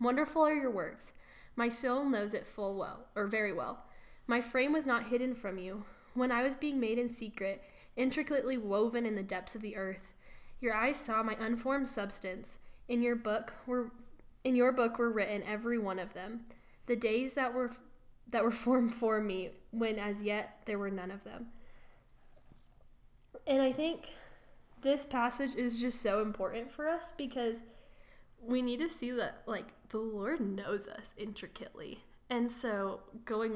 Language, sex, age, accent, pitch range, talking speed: English, female, 10-29, American, 205-245 Hz, 175 wpm